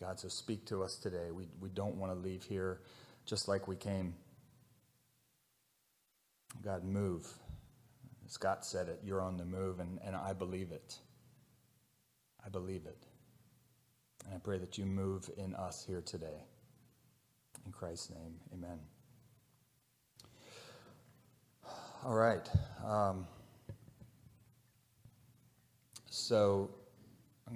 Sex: male